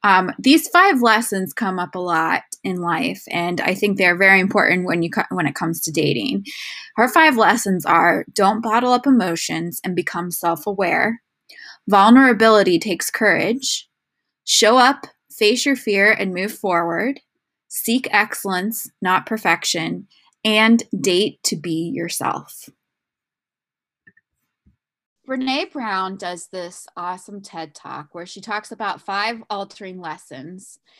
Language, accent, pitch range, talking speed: English, American, 180-235 Hz, 130 wpm